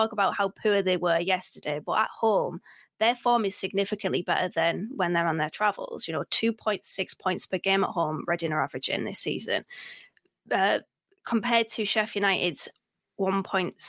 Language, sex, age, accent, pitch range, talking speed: English, female, 20-39, British, 185-225 Hz, 185 wpm